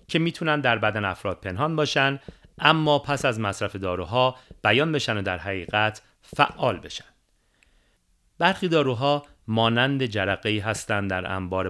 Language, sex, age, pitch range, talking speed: Persian, male, 40-59, 95-135 Hz, 135 wpm